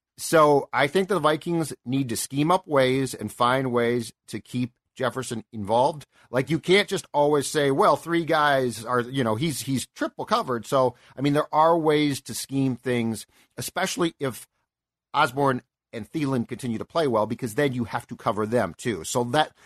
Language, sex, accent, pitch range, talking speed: English, male, American, 120-155 Hz, 185 wpm